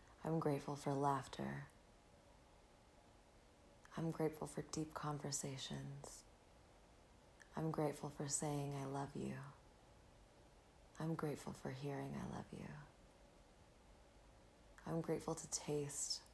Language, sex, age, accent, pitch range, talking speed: English, female, 30-49, American, 140-160 Hz, 100 wpm